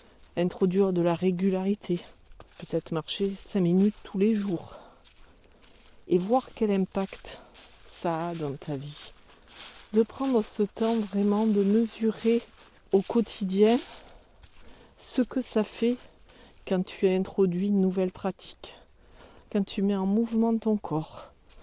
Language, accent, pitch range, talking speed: French, French, 175-210 Hz, 130 wpm